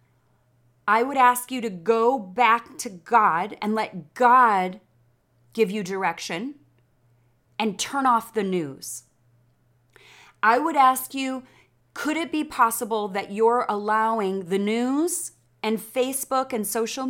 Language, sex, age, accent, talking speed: English, female, 30-49, American, 130 wpm